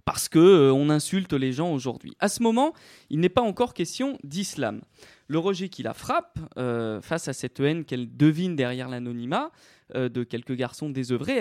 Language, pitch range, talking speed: French, 135-190 Hz, 185 wpm